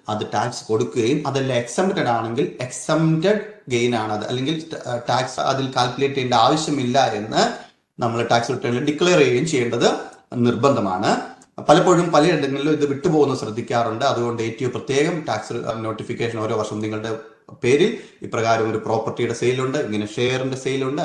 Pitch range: 115-140 Hz